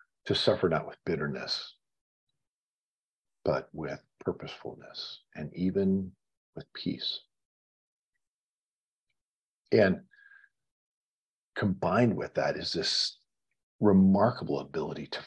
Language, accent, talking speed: English, American, 85 wpm